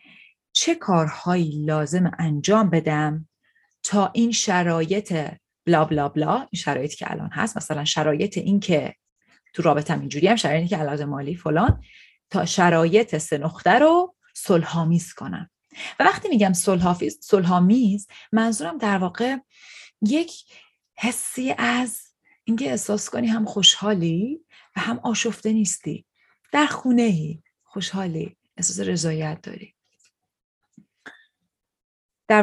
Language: Persian